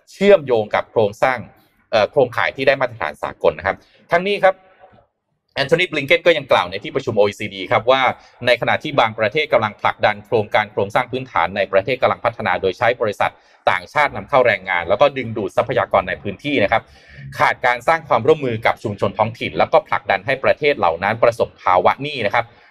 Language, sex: Thai, male